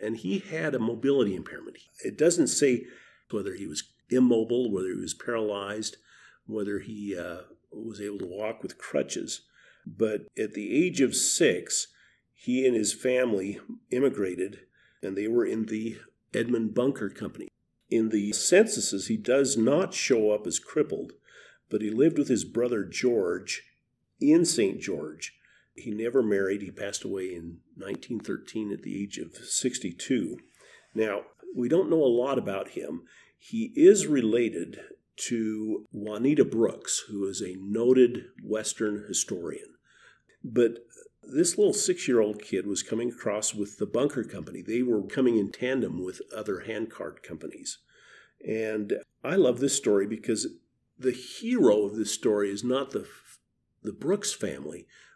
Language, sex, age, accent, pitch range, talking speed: English, male, 50-69, American, 105-130 Hz, 150 wpm